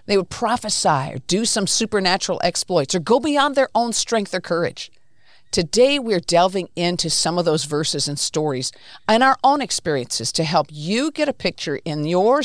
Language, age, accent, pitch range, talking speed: English, 50-69, American, 155-215 Hz, 185 wpm